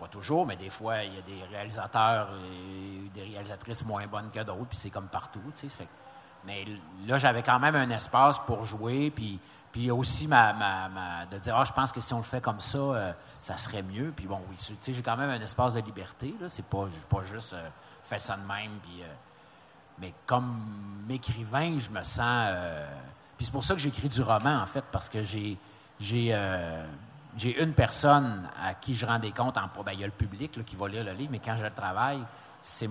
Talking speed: 220 wpm